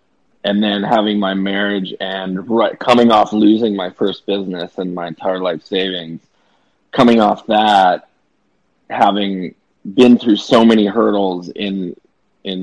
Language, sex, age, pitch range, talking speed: English, male, 20-39, 90-105 Hz, 135 wpm